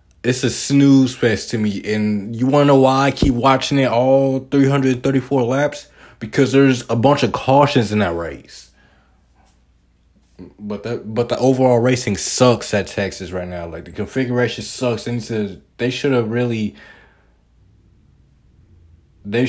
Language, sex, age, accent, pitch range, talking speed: English, male, 20-39, American, 95-125 Hz, 160 wpm